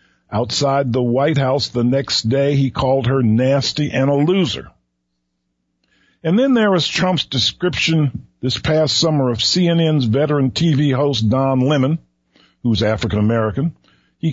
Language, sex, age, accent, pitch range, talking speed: English, male, 50-69, American, 105-160 Hz, 140 wpm